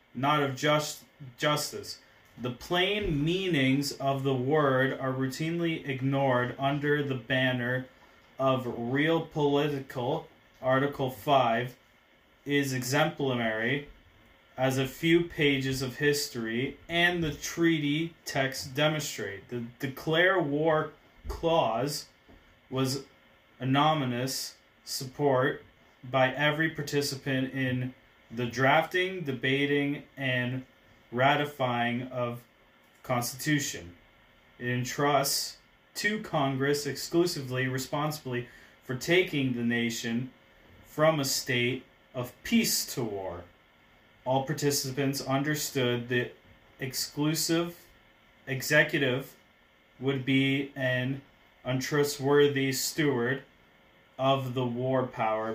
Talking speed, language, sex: 90 wpm, English, male